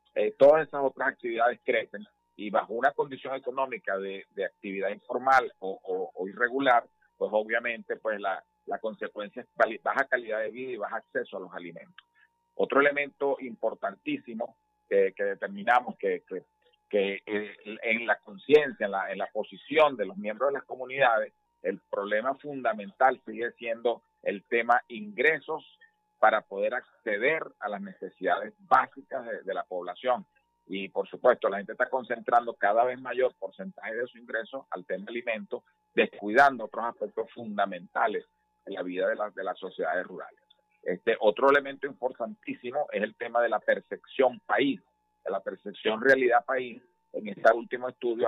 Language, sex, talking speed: Spanish, male, 160 wpm